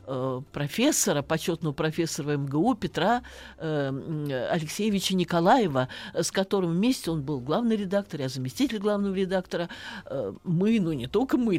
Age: 50-69